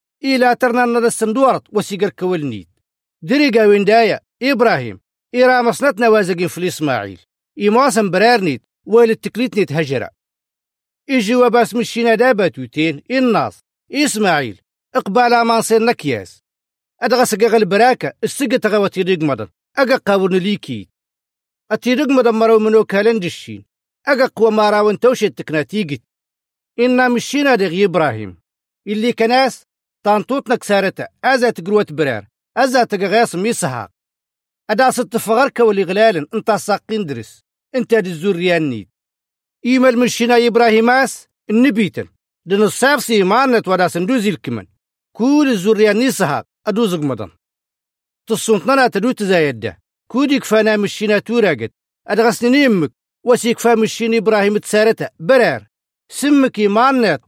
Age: 40-59